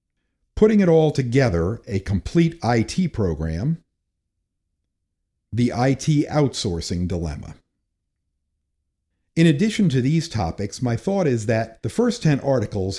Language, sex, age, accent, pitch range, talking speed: English, male, 50-69, American, 100-140 Hz, 115 wpm